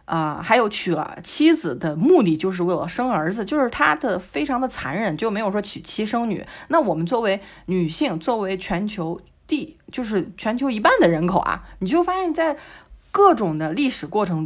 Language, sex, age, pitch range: Chinese, female, 30-49, 180-260 Hz